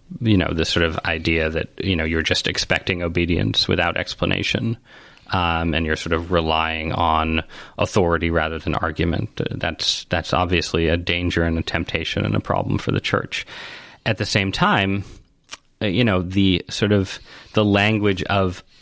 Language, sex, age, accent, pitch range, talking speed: English, male, 30-49, American, 90-100 Hz, 165 wpm